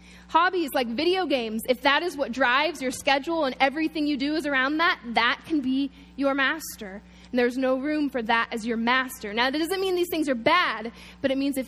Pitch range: 240-310 Hz